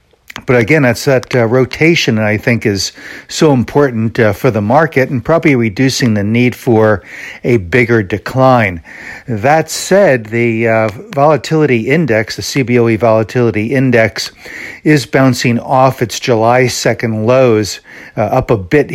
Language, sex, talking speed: English, male, 145 wpm